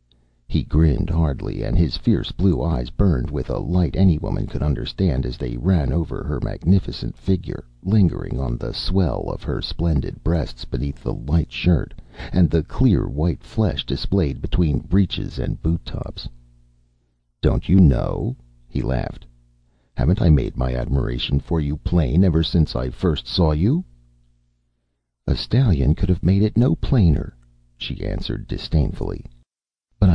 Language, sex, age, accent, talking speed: English, male, 60-79, American, 150 wpm